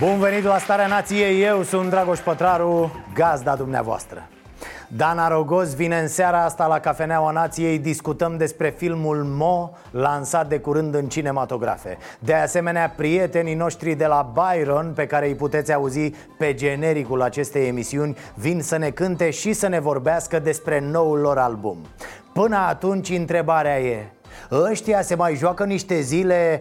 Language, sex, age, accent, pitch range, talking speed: Romanian, male, 30-49, native, 145-185 Hz, 150 wpm